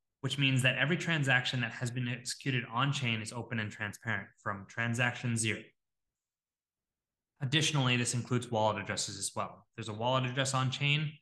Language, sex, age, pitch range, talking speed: English, male, 20-39, 115-135 Hz, 155 wpm